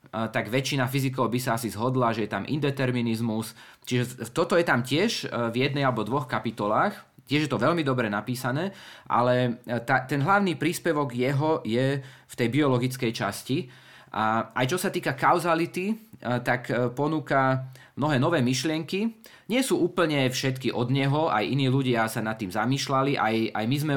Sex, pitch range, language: male, 115-140 Hz, Slovak